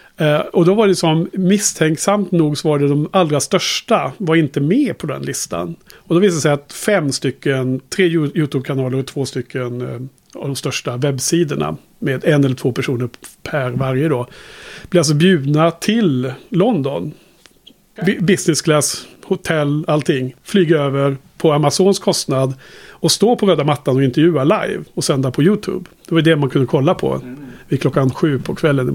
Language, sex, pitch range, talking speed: Swedish, male, 135-180 Hz, 180 wpm